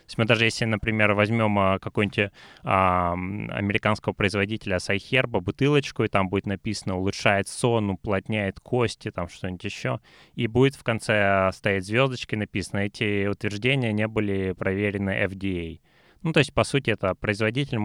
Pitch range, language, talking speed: 95-110 Hz, Russian, 160 wpm